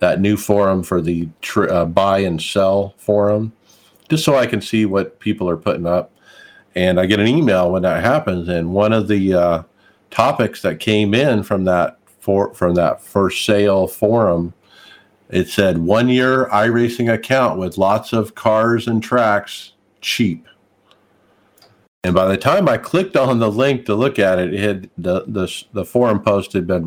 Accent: American